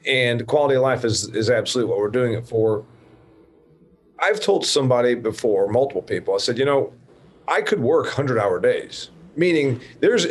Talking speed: 175 wpm